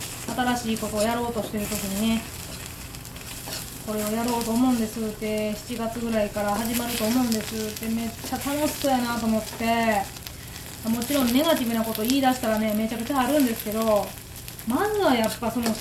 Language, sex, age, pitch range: Japanese, female, 20-39, 215-255 Hz